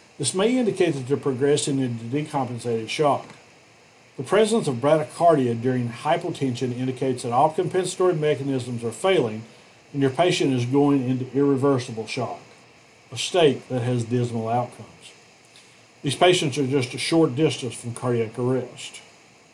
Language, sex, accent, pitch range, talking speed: English, male, American, 125-155 Hz, 140 wpm